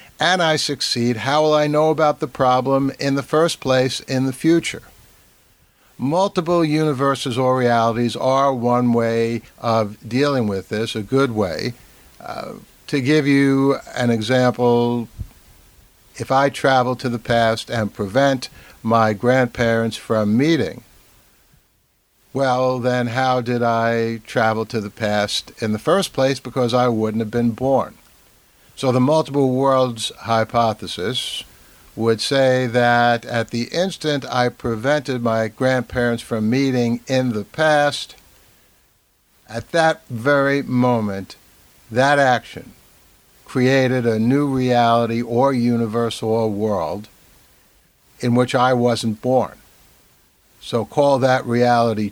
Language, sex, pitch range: English, male, 115-135 Hz